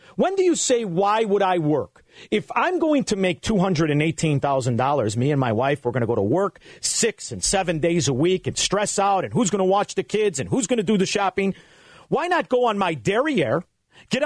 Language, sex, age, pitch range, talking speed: English, male, 50-69, 135-200 Hz, 250 wpm